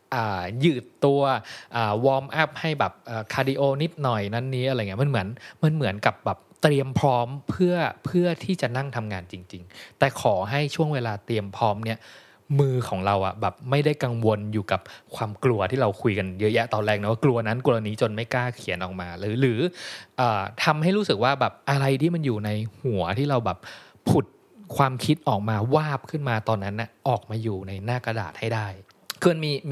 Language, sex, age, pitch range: Thai, male, 20-39, 105-140 Hz